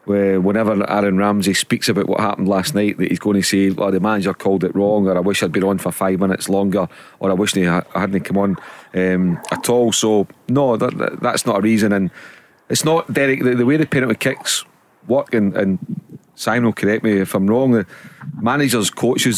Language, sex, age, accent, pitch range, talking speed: English, male, 40-59, British, 100-120 Hz, 225 wpm